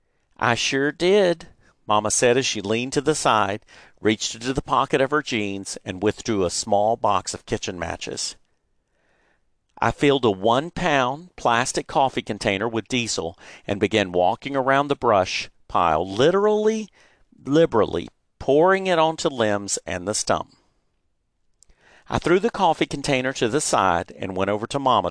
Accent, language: American, English